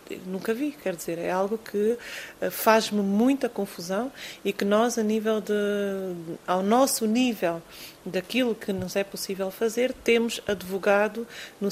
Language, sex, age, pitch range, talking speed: Portuguese, female, 30-49, 195-240 Hz, 130 wpm